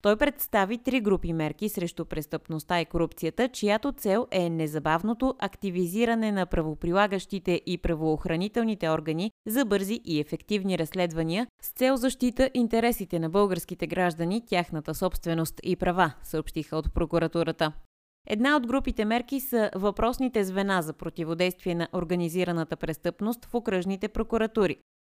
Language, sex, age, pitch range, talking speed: Bulgarian, female, 20-39, 165-220 Hz, 125 wpm